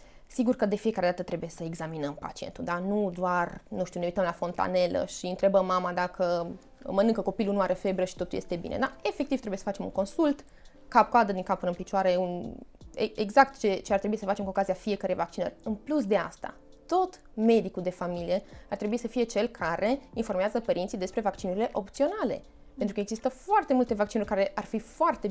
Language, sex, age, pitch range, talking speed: Romanian, female, 20-39, 190-260 Hz, 200 wpm